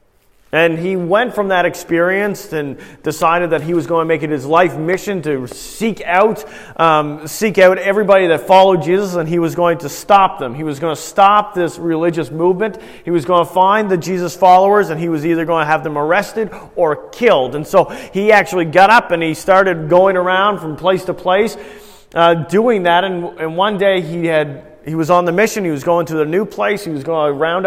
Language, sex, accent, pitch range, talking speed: English, male, American, 165-200 Hz, 225 wpm